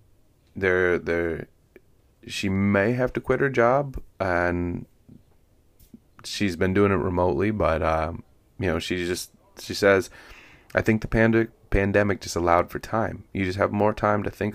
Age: 30-49